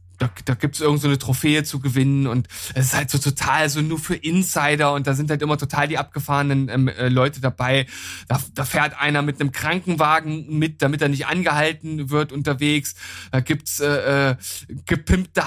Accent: German